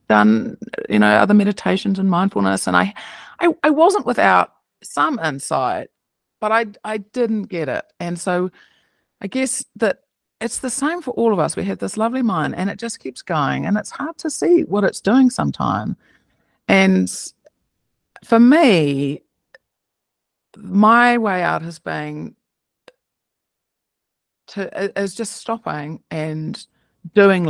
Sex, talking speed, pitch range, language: female, 145 wpm, 160-220 Hz, English